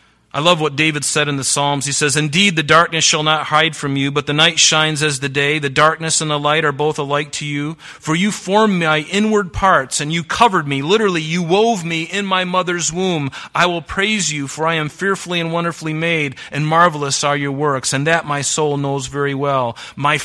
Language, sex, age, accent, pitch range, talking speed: English, male, 30-49, American, 120-155 Hz, 230 wpm